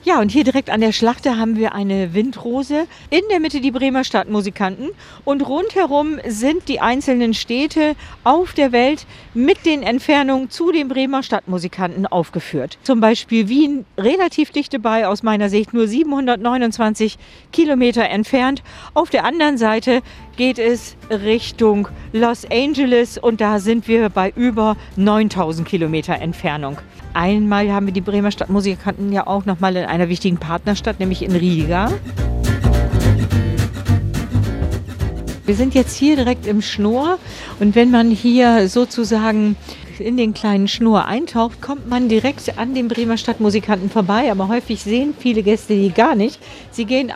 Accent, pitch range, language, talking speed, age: German, 200-260 Hz, German, 150 wpm, 50-69